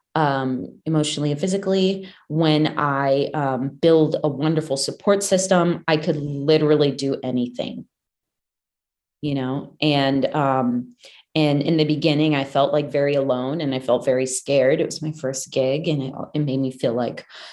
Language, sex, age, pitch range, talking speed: English, female, 30-49, 140-170 Hz, 160 wpm